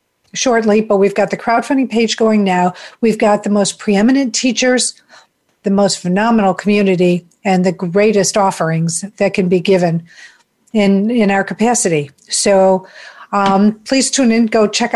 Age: 50-69